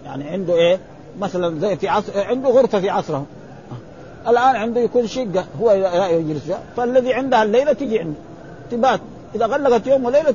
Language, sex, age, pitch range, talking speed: Arabic, male, 50-69, 170-225 Hz, 170 wpm